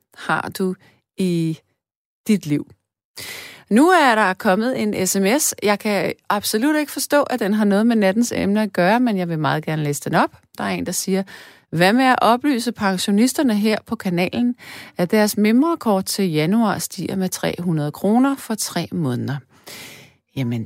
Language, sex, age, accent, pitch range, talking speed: Danish, female, 30-49, native, 175-235 Hz, 170 wpm